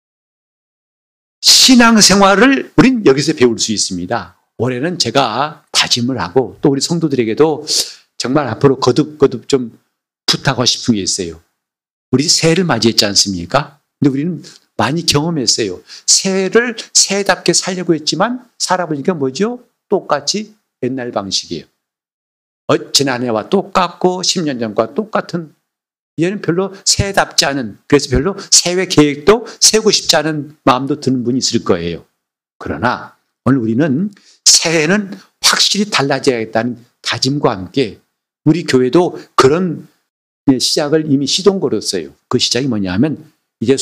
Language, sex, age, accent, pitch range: Korean, male, 50-69, native, 125-195 Hz